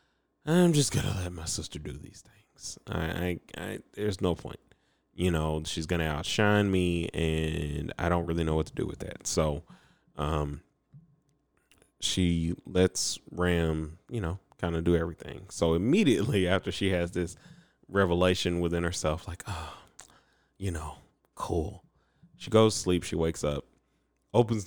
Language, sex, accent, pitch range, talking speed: English, male, American, 80-110 Hz, 155 wpm